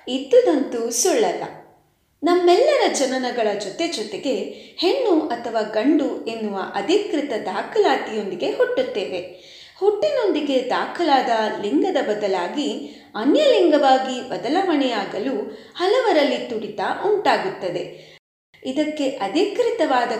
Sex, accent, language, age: female, native, Kannada, 30-49